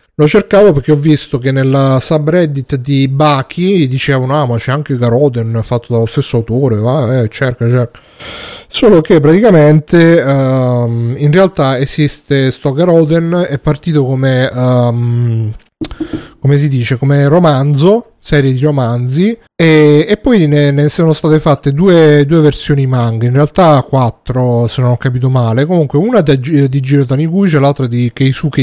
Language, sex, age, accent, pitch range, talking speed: Italian, male, 30-49, native, 130-160 Hz, 155 wpm